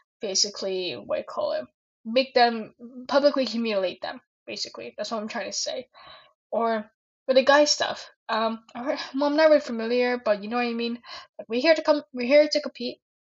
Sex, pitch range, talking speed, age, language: female, 220-275 Hz, 200 wpm, 10-29, English